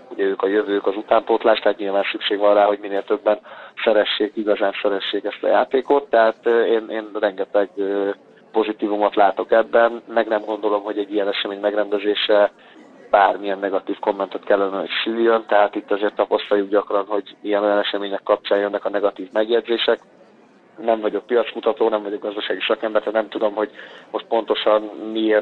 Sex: male